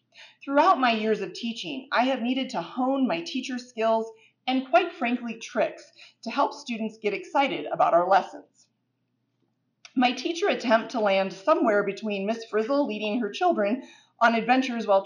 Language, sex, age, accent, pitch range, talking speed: English, female, 30-49, American, 195-285 Hz, 160 wpm